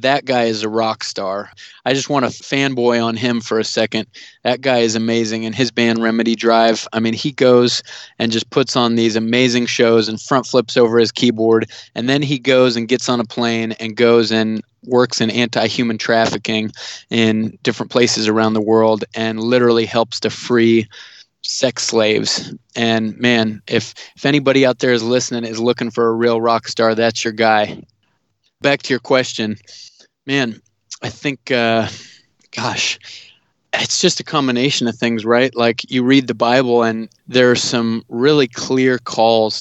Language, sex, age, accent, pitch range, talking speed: English, male, 20-39, American, 115-125 Hz, 180 wpm